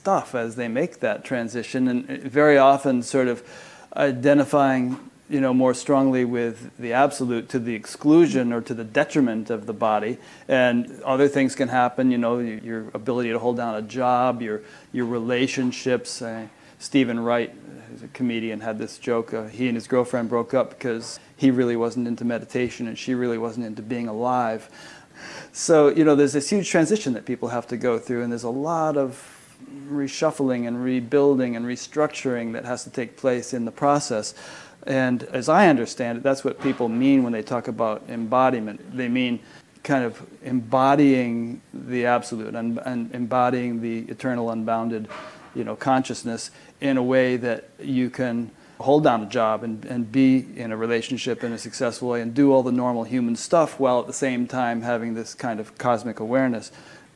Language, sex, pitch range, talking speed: English, male, 115-130 Hz, 180 wpm